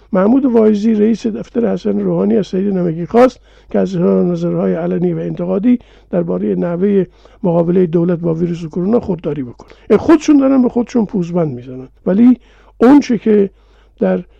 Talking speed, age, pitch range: 145 wpm, 50-69, 175-225 Hz